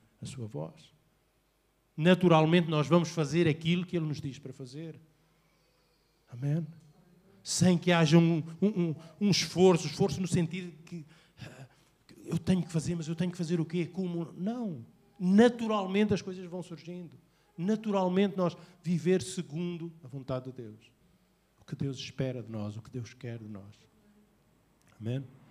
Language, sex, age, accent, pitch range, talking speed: Portuguese, male, 50-69, Brazilian, 135-175 Hz, 155 wpm